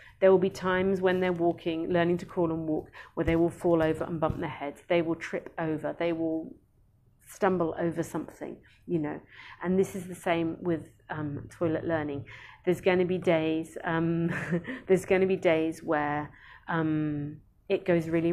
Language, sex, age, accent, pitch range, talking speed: English, female, 40-59, British, 165-205 Hz, 185 wpm